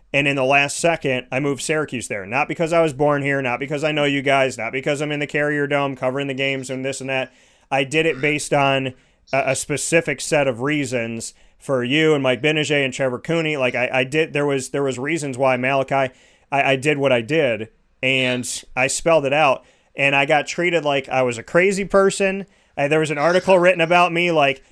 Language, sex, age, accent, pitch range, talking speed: English, male, 30-49, American, 135-170 Hz, 230 wpm